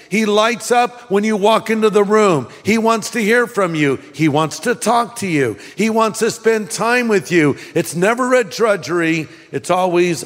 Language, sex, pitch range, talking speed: English, male, 140-195 Hz, 200 wpm